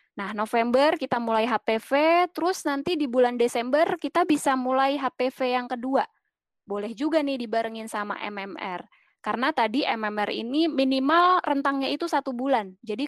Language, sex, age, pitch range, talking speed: Indonesian, female, 20-39, 215-285 Hz, 145 wpm